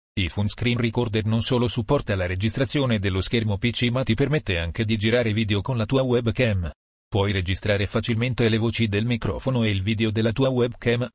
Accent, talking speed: native, 190 wpm